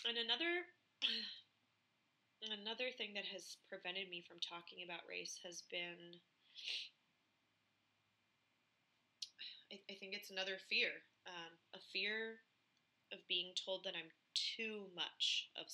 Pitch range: 165-195 Hz